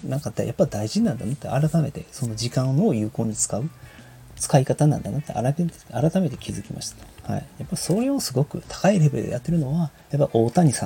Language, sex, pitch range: Japanese, male, 110-160 Hz